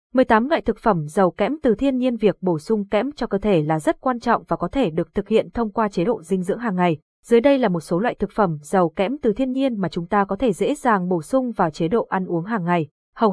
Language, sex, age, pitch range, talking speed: Vietnamese, female, 20-39, 190-240 Hz, 290 wpm